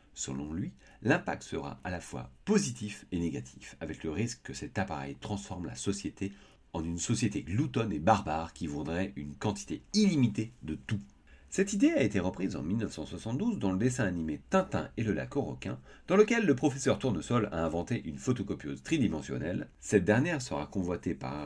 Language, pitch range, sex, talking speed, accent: French, 80-130 Hz, male, 180 wpm, French